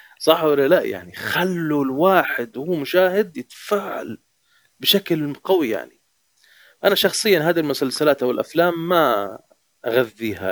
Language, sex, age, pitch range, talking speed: Arabic, male, 30-49, 110-165 Hz, 110 wpm